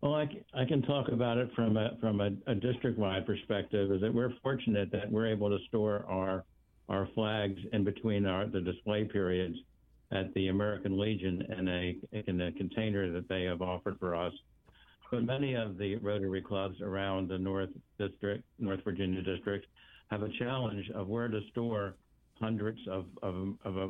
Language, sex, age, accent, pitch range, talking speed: English, male, 60-79, American, 90-105 Hz, 180 wpm